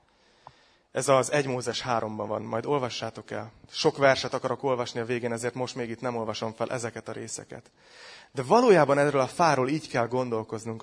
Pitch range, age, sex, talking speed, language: 110-135 Hz, 30-49, male, 175 wpm, Hungarian